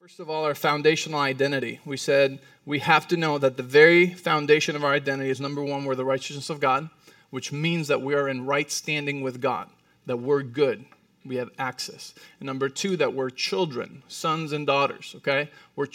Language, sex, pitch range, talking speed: English, male, 135-170 Hz, 205 wpm